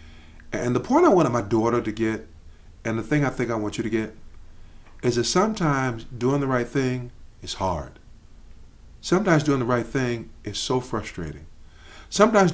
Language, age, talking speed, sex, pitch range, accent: English, 50-69, 175 wpm, male, 105-145 Hz, American